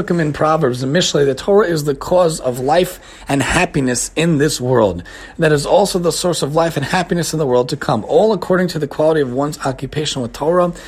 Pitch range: 140-180 Hz